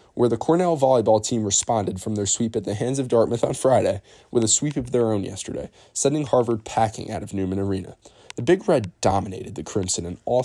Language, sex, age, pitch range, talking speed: English, male, 10-29, 100-125 Hz, 220 wpm